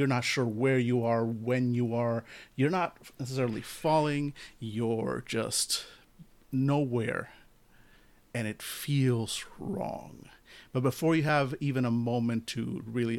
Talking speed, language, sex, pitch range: 130 wpm, English, male, 115-145 Hz